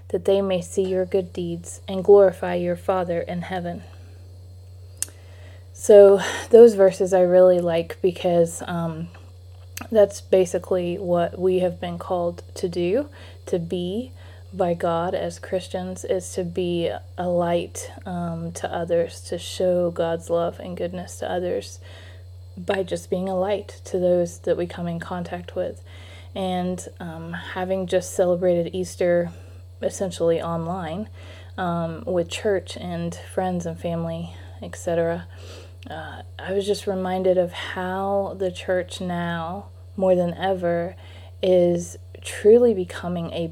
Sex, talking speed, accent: female, 135 wpm, American